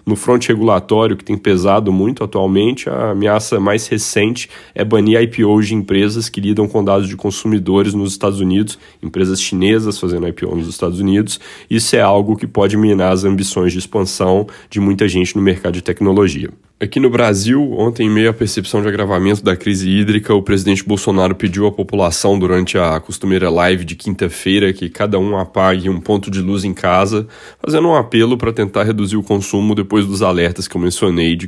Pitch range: 95-105 Hz